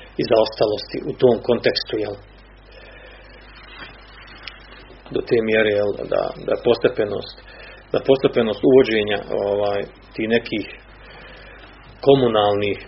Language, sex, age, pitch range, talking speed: Croatian, male, 40-59, 110-135 Hz, 95 wpm